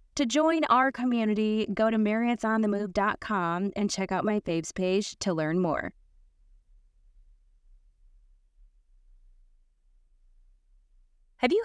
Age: 20-39